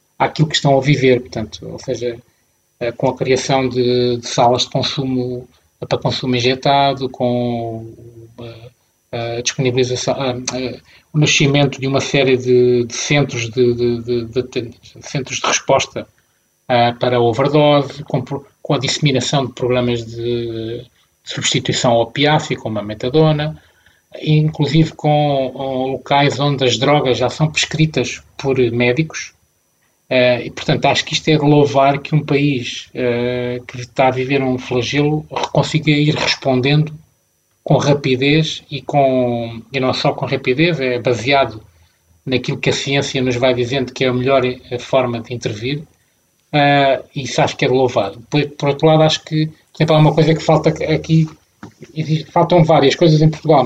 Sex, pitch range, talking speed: male, 125-145 Hz, 160 wpm